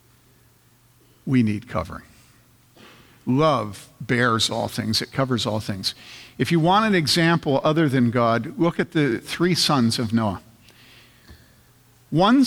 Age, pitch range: 50-69, 120-170 Hz